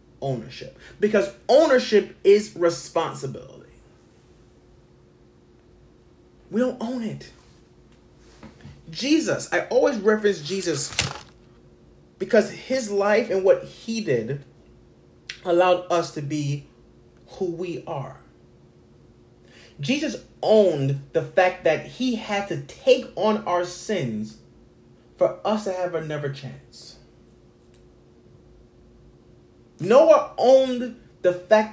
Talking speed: 95 wpm